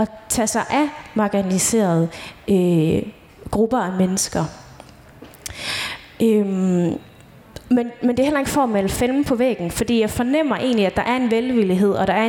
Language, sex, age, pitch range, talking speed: Danish, female, 20-39, 185-235 Hz, 150 wpm